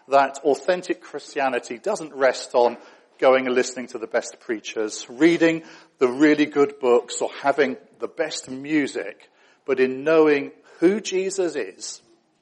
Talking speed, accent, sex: 140 wpm, British, male